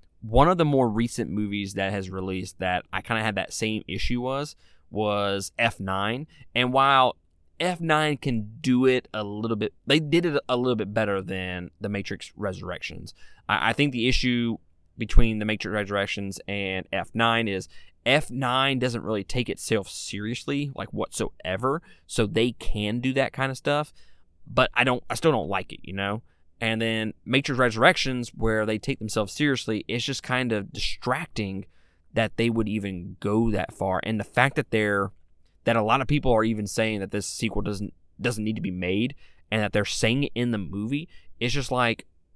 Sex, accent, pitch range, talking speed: male, American, 100-125 Hz, 185 wpm